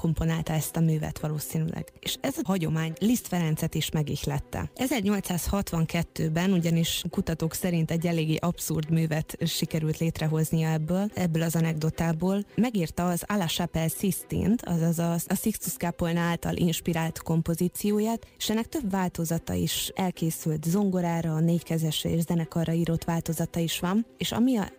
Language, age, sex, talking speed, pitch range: Hungarian, 20-39, female, 140 wpm, 165-190 Hz